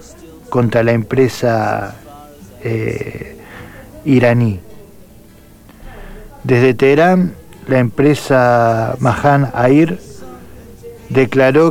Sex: male